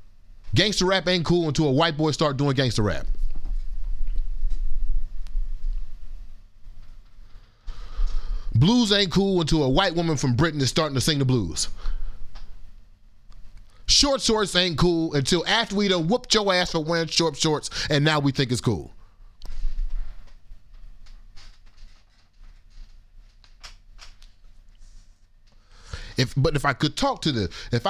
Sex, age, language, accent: male, 30-49, English, American